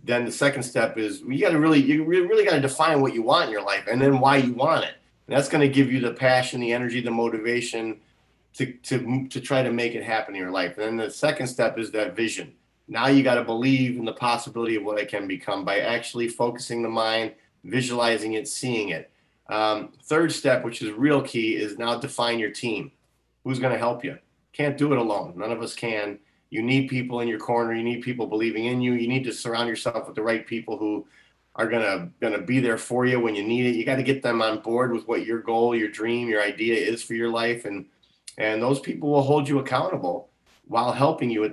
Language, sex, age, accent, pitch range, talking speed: English, male, 30-49, American, 110-130 Hz, 240 wpm